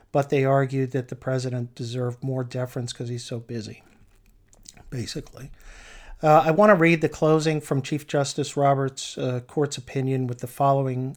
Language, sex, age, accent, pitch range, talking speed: English, male, 50-69, American, 130-150 Hz, 165 wpm